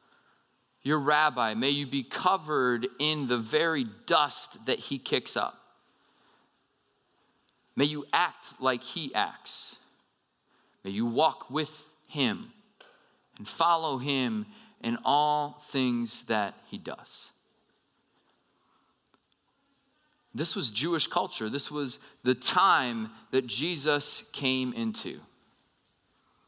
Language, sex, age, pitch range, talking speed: English, male, 30-49, 130-170 Hz, 105 wpm